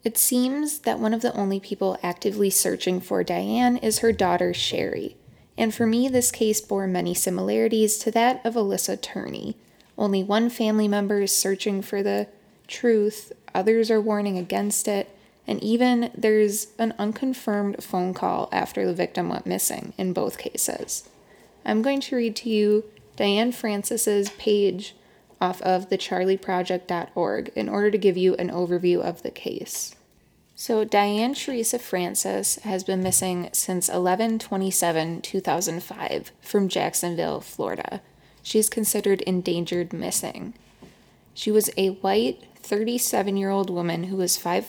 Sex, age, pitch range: female, 20-39, 185-225 Hz